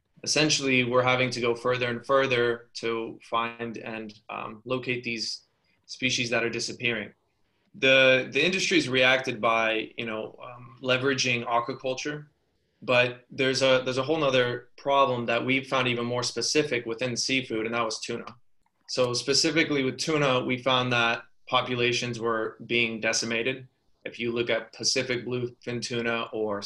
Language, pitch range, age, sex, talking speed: English, 115-130 Hz, 20-39, male, 150 wpm